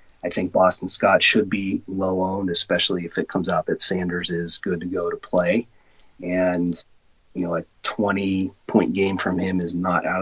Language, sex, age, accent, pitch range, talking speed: English, male, 30-49, American, 90-110 Hz, 195 wpm